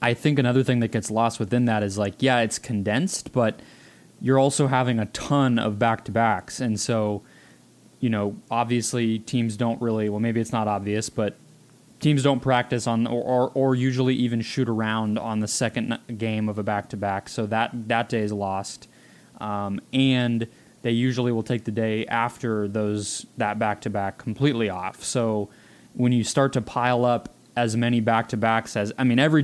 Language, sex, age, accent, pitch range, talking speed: English, male, 20-39, American, 105-120 Hz, 180 wpm